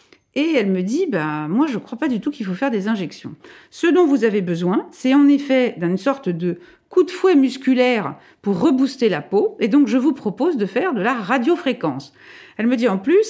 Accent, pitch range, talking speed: French, 185-280 Hz, 240 wpm